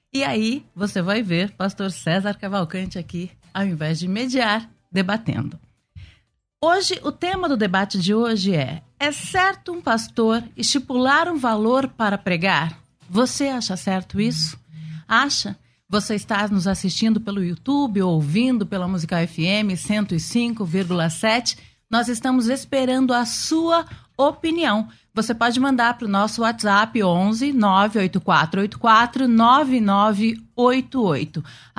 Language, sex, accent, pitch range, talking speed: Portuguese, female, Brazilian, 190-260 Hz, 115 wpm